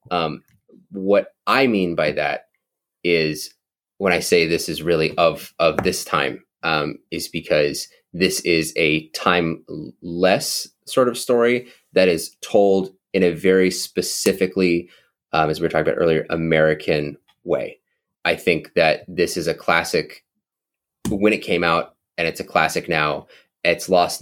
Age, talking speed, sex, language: 20-39, 155 wpm, male, English